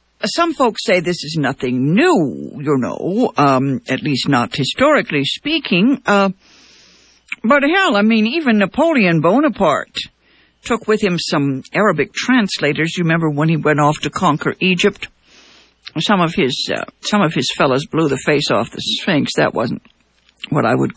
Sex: female